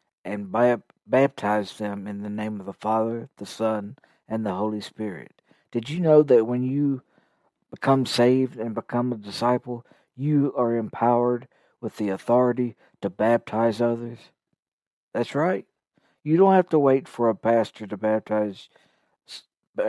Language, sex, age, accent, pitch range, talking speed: English, male, 60-79, American, 110-130 Hz, 150 wpm